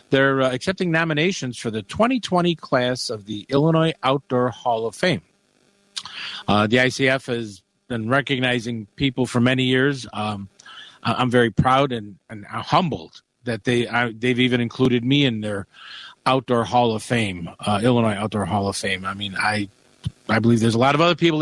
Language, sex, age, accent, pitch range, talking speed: English, male, 50-69, American, 115-145 Hz, 175 wpm